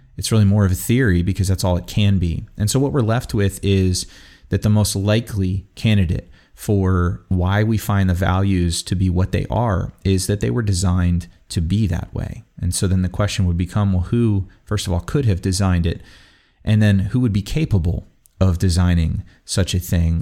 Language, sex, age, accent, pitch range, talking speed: English, male, 30-49, American, 95-110 Hz, 210 wpm